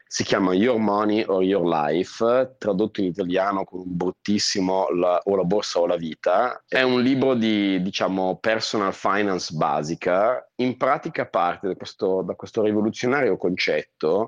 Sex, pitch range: male, 90-110 Hz